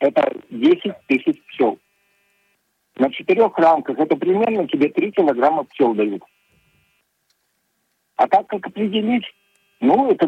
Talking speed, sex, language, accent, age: 115 wpm, male, Russian, native, 50-69